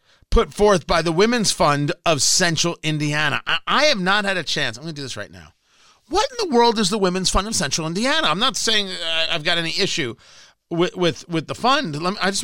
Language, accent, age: English, American, 40-59